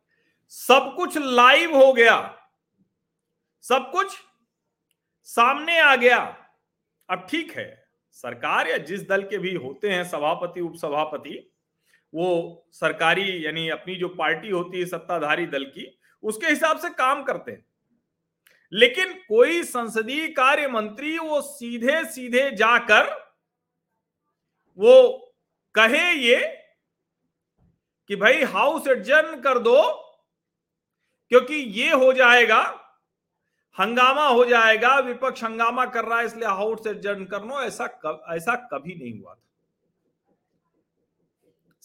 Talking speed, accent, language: 115 wpm, native, Hindi